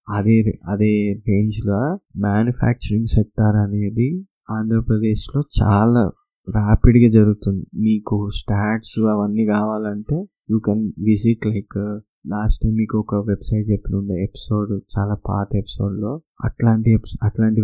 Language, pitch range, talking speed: Telugu, 105-120 Hz, 110 wpm